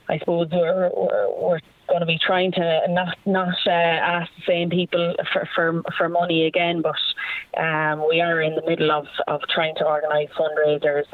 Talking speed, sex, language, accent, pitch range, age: 190 wpm, female, English, Irish, 150-175 Hz, 20-39